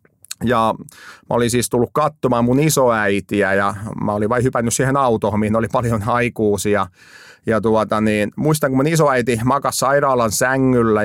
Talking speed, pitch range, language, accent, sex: 160 wpm, 110-130 Hz, Finnish, native, male